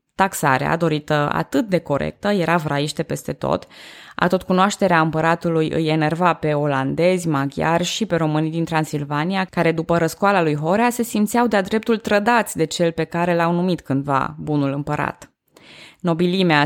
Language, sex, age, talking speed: Romanian, female, 20-39, 155 wpm